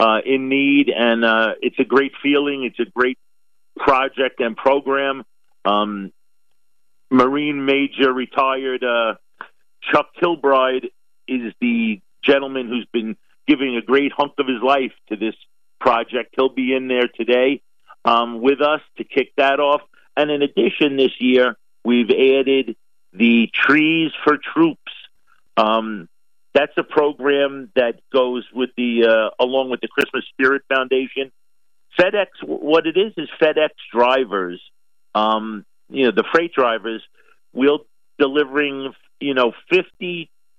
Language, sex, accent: English, male, American